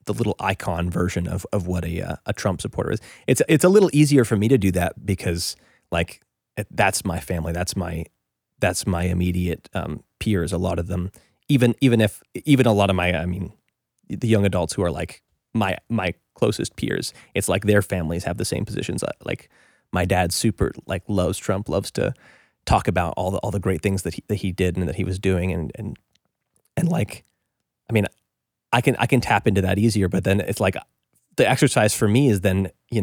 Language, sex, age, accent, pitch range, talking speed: English, male, 20-39, American, 90-110 Hz, 215 wpm